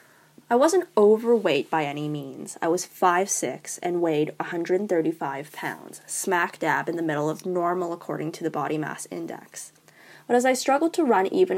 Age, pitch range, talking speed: 10-29, 170-245 Hz, 170 wpm